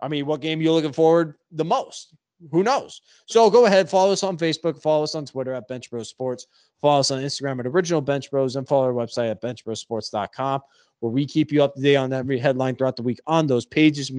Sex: male